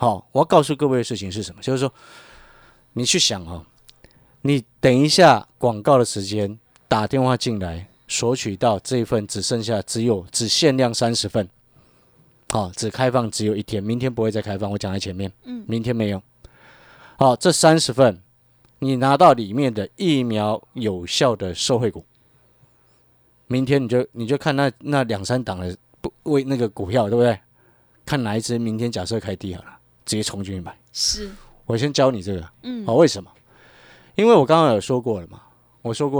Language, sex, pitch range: Chinese, male, 105-140 Hz